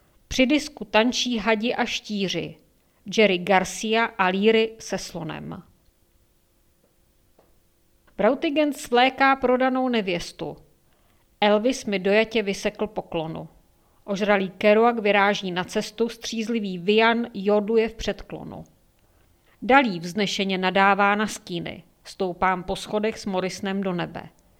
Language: Czech